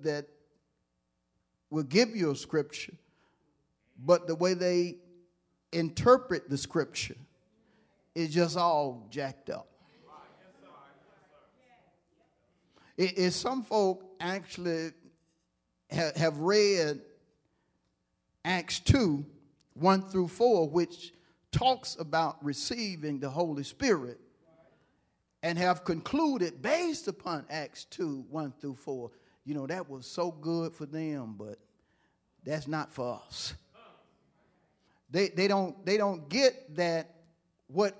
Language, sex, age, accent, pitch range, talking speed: English, male, 50-69, American, 150-195 Hz, 105 wpm